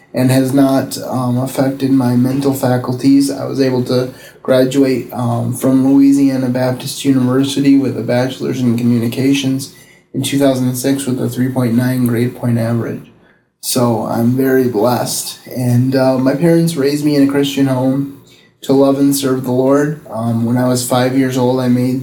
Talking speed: 165 wpm